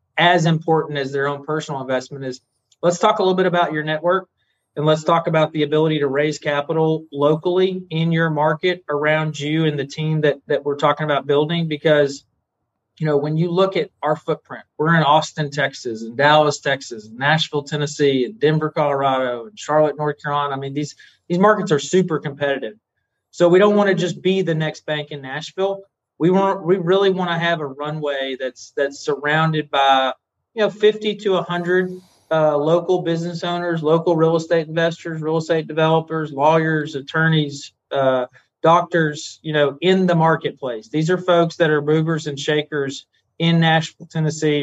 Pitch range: 140-165 Hz